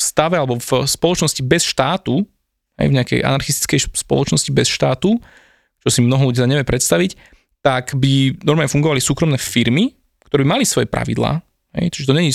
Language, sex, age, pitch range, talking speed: Slovak, male, 20-39, 125-145 Hz, 170 wpm